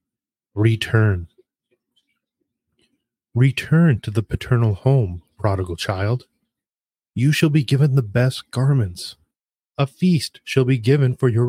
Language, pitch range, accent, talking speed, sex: English, 110-135 Hz, American, 115 wpm, male